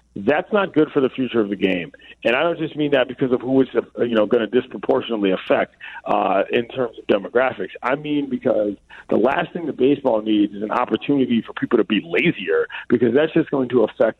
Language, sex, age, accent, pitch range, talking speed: English, male, 40-59, American, 115-140 Hz, 225 wpm